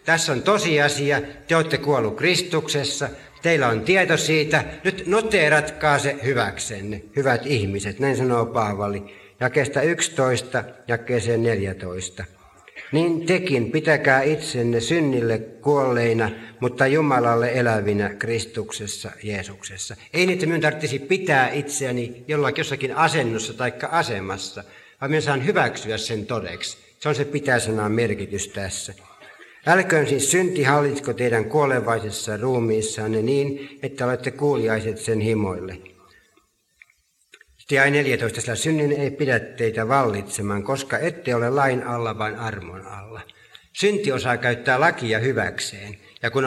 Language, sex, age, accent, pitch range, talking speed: Finnish, male, 60-79, native, 110-145 Hz, 120 wpm